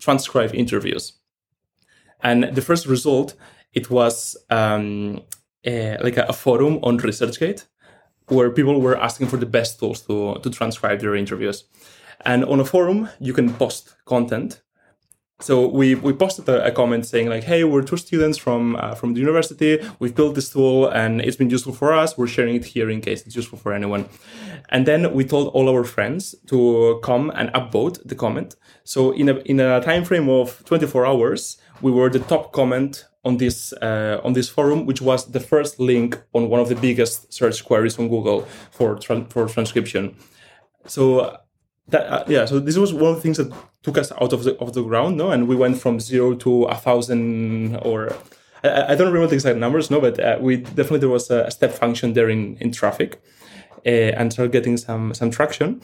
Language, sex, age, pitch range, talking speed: English, male, 20-39, 115-140 Hz, 200 wpm